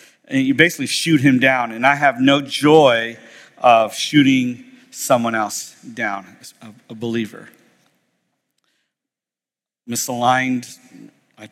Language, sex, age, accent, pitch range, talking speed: English, male, 50-69, American, 120-155 Hz, 105 wpm